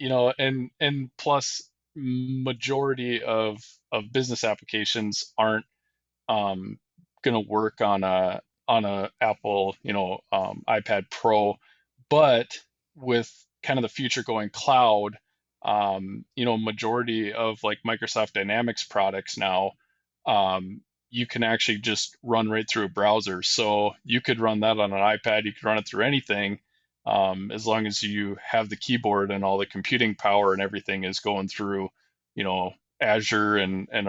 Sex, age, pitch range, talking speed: male, 20-39, 100-120 Hz, 160 wpm